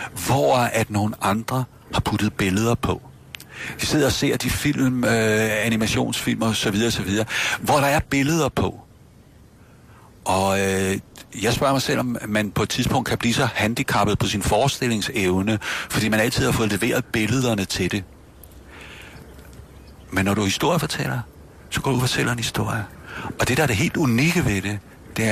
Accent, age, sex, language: native, 60-79, male, Danish